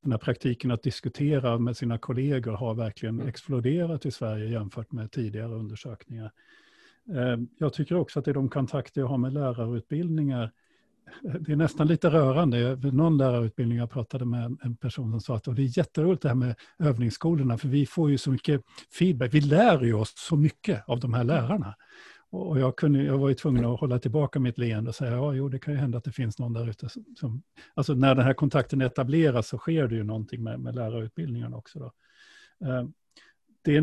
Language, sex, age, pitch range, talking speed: Swedish, male, 50-69, 120-150 Hz, 200 wpm